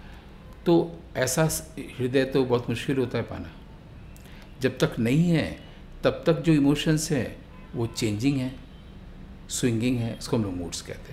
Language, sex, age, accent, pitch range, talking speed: English, male, 50-69, Indian, 100-145 Hz, 150 wpm